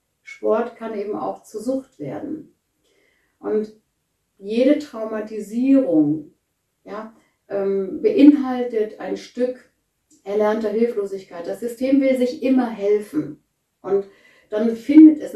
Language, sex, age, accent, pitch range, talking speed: German, female, 60-79, German, 200-245 Hz, 100 wpm